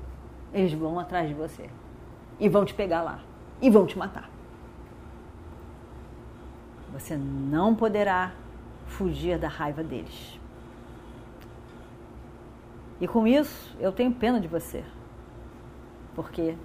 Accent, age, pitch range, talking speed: Brazilian, 40-59, 160-230 Hz, 110 wpm